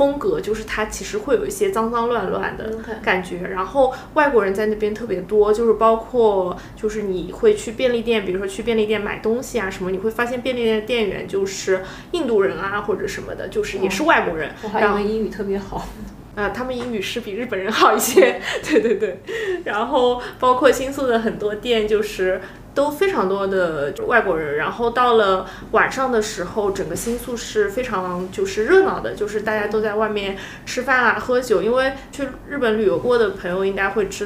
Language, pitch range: Chinese, 195-245 Hz